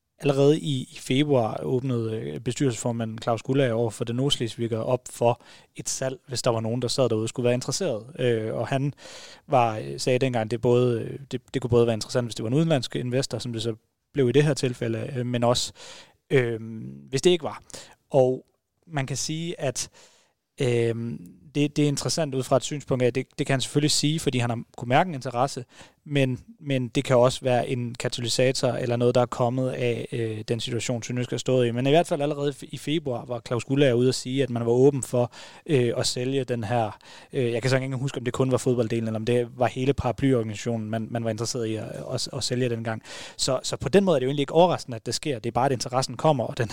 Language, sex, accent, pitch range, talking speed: Danish, male, native, 120-135 Hz, 240 wpm